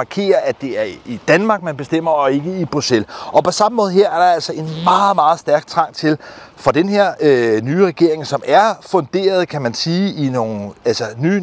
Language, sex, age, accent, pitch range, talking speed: Danish, male, 30-49, native, 145-195 Hz, 215 wpm